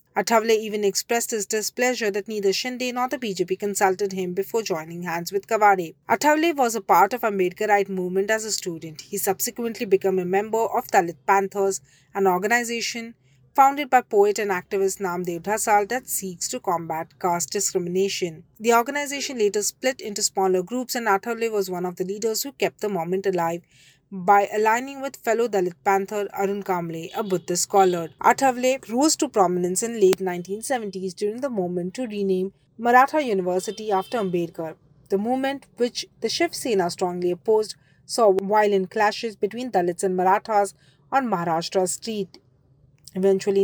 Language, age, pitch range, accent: English, 30-49, 180-225 Hz, Indian